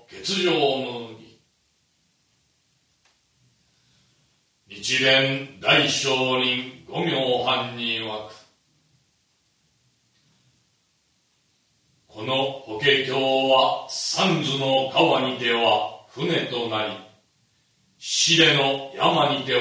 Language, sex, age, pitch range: Japanese, male, 40-59, 115-140 Hz